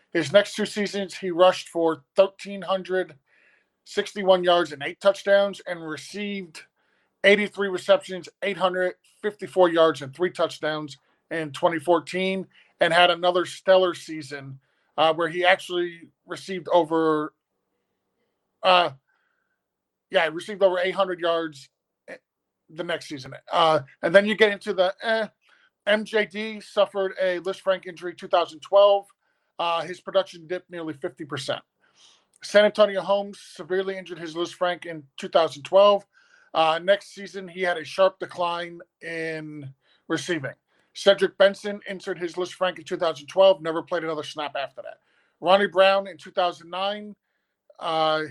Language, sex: English, male